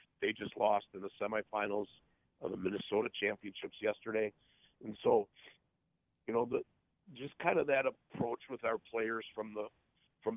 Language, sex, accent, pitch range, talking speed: English, male, American, 110-125 Hz, 155 wpm